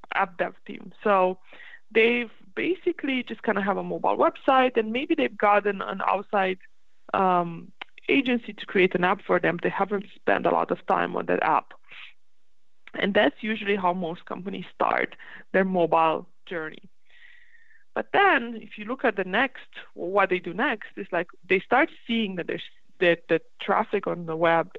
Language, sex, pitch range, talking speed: English, female, 180-240 Hz, 175 wpm